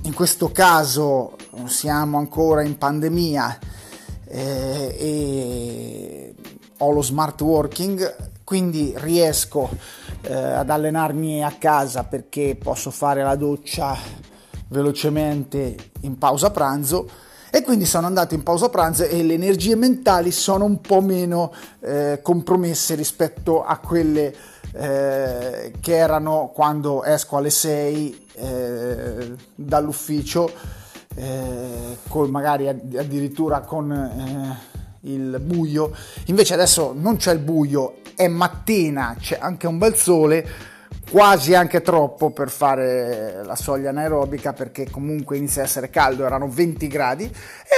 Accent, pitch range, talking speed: native, 140-180 Hz, 120 wpm